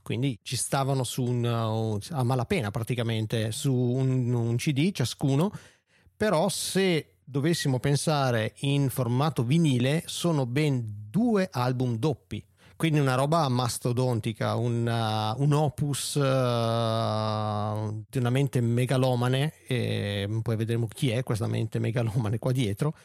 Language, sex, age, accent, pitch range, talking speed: Italian, male, 40-59, native, 120-145 Hz, 125 wpm